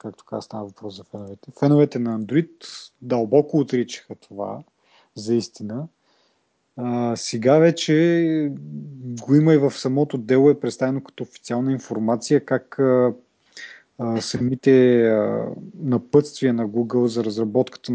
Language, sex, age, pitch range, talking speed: Bulgarian, male, 30-49, 115-145 Hz, 115 wpm